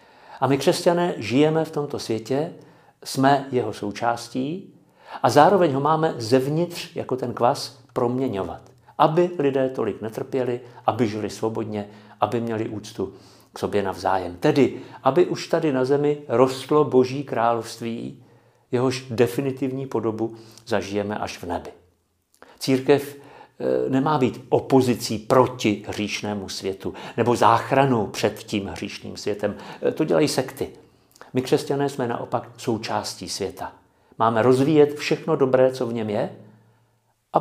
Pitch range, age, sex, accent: 110-135 Hz, 50-69, male, native